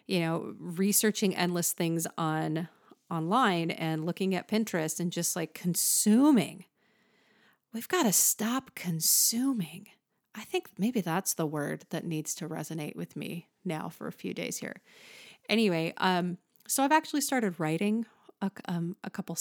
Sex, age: female, 30-49